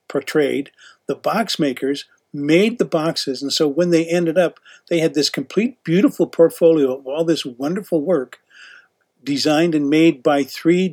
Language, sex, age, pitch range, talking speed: English, male, 50-69, 140-170 Hz, 160 wpm